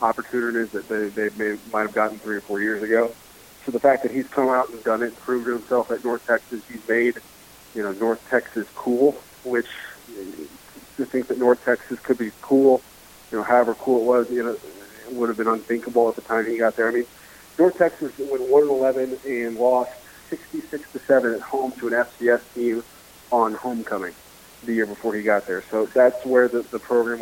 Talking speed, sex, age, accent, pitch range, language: 205 wpm, male, 40-59, American, 110-125 Hz, English